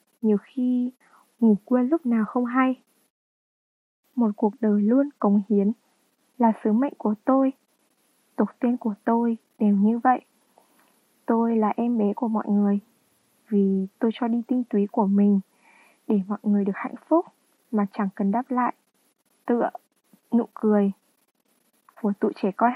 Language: Vietnamese